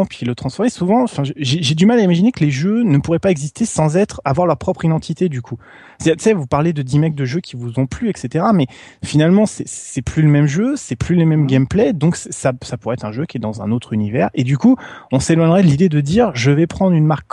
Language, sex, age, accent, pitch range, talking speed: French, male, 20-39, French, 125-170 Hz, 275 wpm